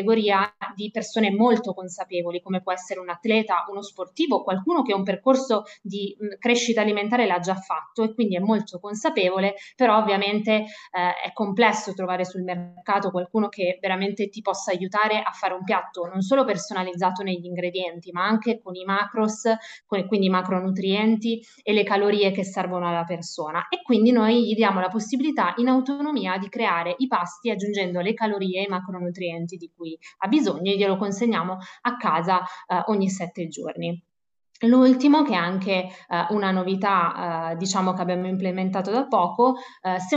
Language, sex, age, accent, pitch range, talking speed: Italian, female, 20-39, native, 185-225 Hz, 170 wpm